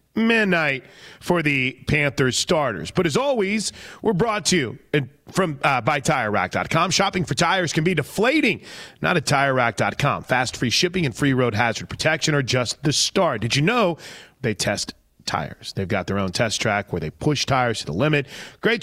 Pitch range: 125-180 Hz